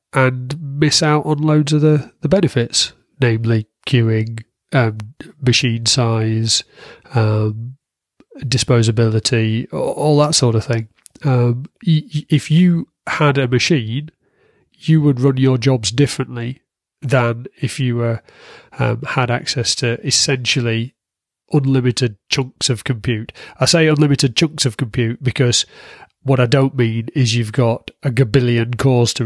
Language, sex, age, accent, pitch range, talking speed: English, male, 30-49, British, 115-140 Hz, 130 wpm